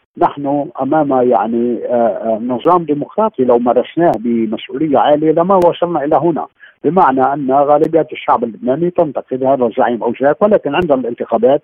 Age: 50-69